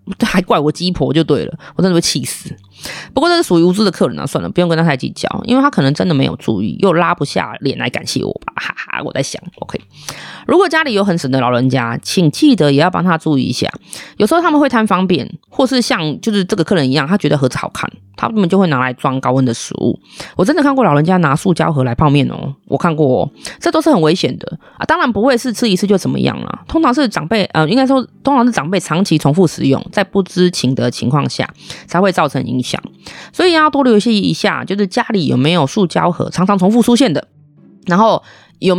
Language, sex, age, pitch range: Chinese, female, 20-39, 155-225 Hz